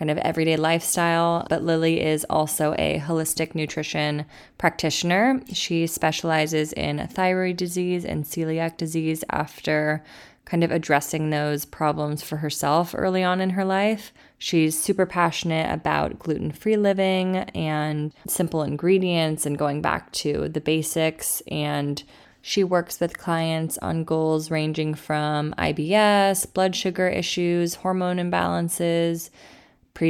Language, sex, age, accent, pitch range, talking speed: English, female, 20-39, American, 150-170 Hz, 130 wpm